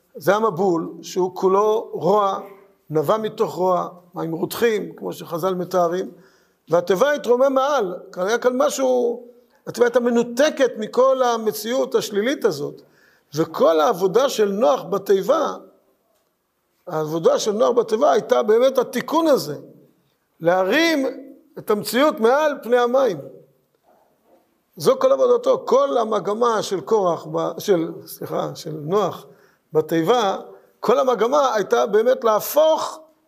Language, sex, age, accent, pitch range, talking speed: Hebrew, male, 50-69, native, 190-275 Hz, 110 wpm